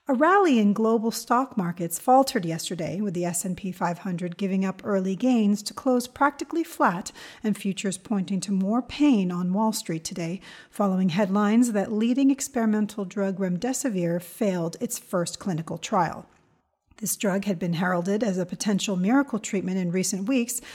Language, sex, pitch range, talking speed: English, female, 185-245 Hz, 160 wpm